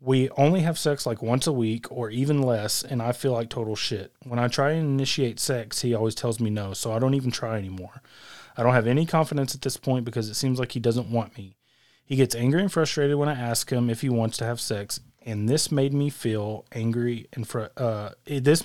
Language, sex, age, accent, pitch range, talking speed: English, male, 30-49, American, 115-140 Hz, 240 wpm